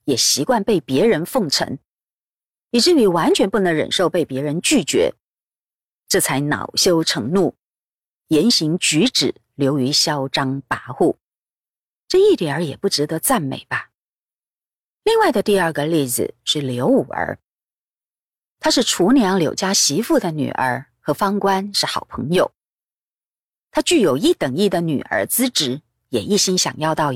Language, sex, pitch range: Chinese, female, 150-230 Hz